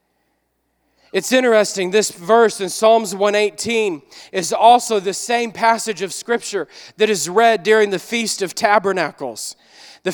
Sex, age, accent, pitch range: male, 40-59, American, 200-235 Hz